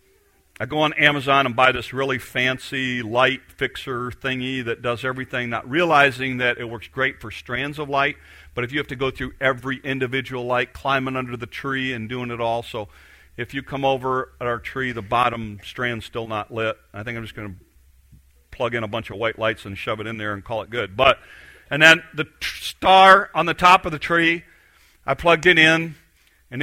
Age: 40-59